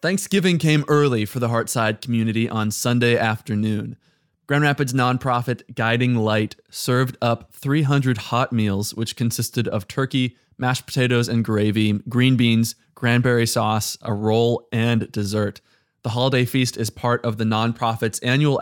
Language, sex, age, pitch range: English, male, 20-39, 110-130 Hz